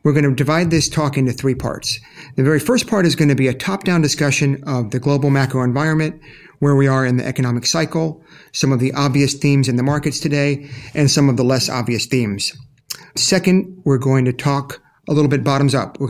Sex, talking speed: male, 220 wpm